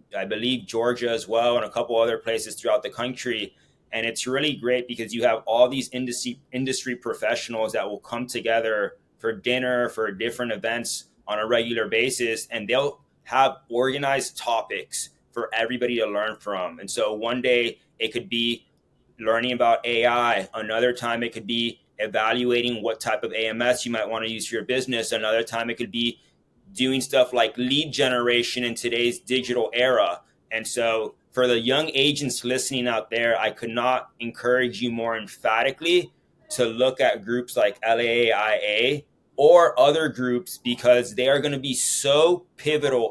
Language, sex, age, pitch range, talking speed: English, male, 20-39, 115-130 Hz, 170 wpm